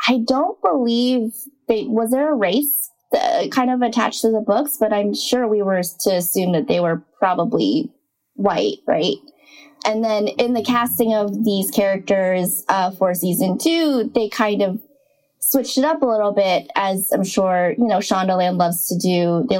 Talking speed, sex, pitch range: 180 wpm, female, 190-245 Hz